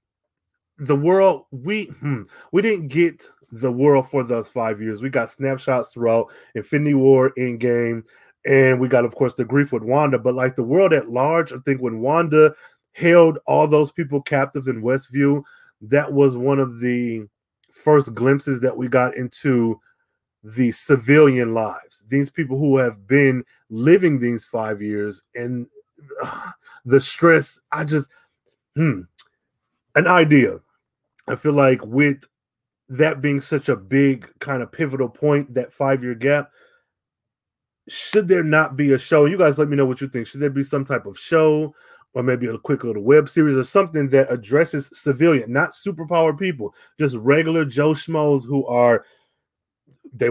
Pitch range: 125-150 Hz